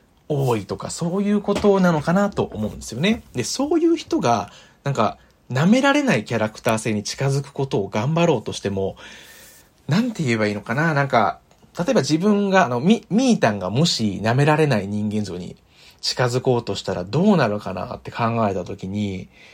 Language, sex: Japanese, male